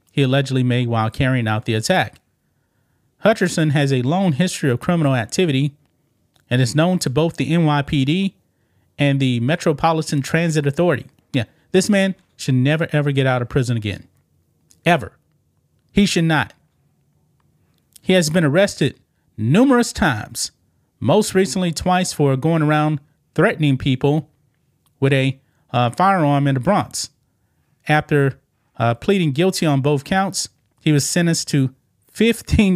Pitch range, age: 125-155 Hz, 30-49